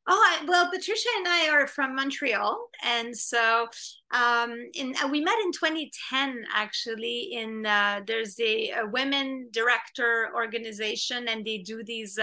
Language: English